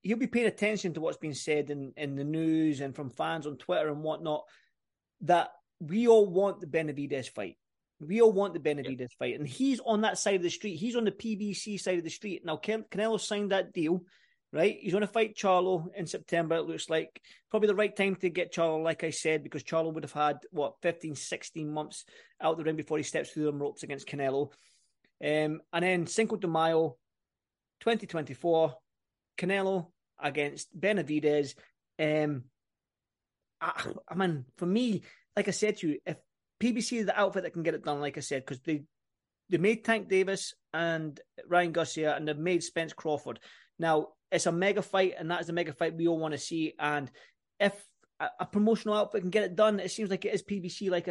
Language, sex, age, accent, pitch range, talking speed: English, male, 30-49, British, 150-195 Hz, 205 wpm